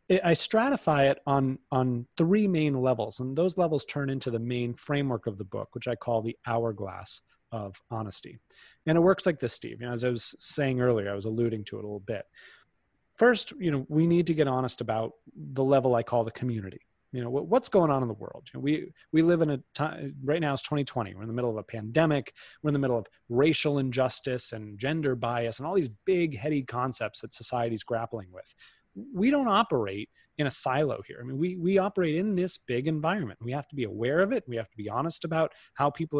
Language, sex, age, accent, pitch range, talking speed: English, male, 30-49, American, 120-160 Hz, 235 wpm